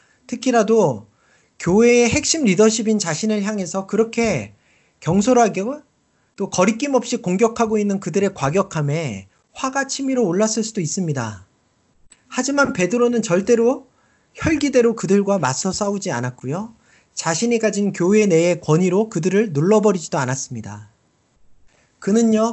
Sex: male